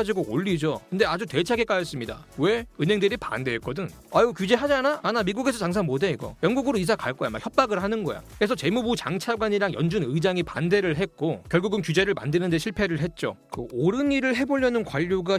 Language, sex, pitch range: Korean, male, 165-225 Hz